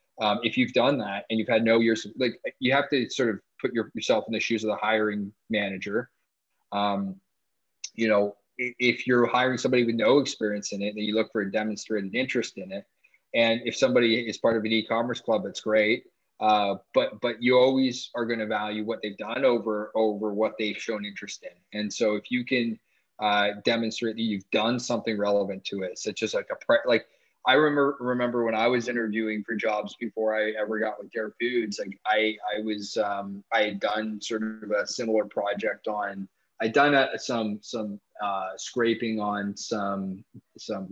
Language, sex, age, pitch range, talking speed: English, male, 20-39, 105-115 Hz, 200 wpm